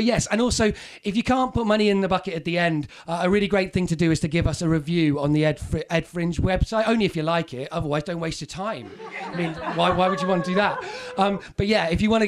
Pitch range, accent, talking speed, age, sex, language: 160-190 Hz, British, 305 wpm, 30-49, male, English